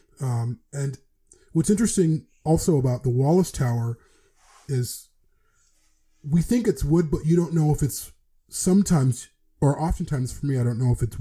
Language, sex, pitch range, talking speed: English, male, 115-140 Hz, 160 wpm